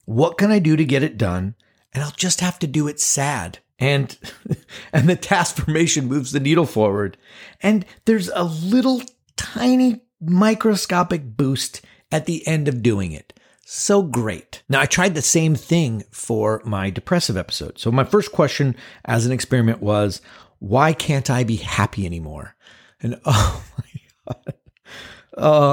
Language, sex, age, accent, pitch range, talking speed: English, male, 50-69, American, 100-155 Hz, 160 wpm